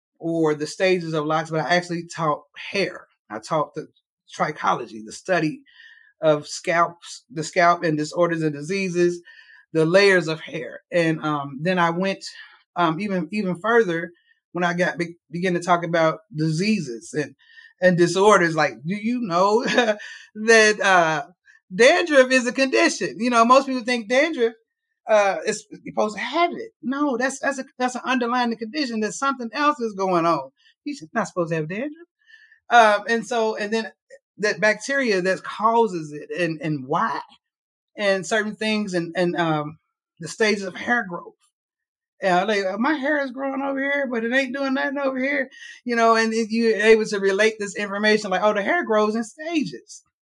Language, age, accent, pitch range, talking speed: English, 30-49, American, 175-265 Hz, 175 wpm